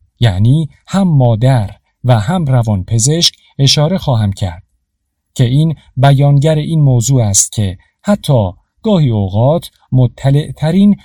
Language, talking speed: Persian, 115 wpm